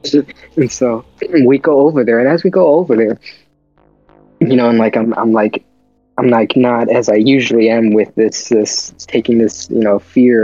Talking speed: 195 wpm